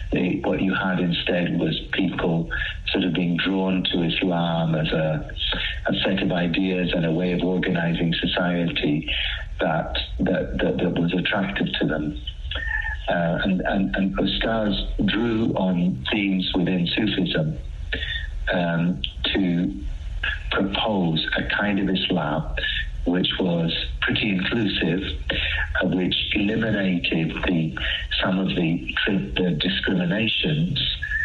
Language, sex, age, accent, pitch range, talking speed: English, male, 60-79, British, 85-95 Hz, 115 wpm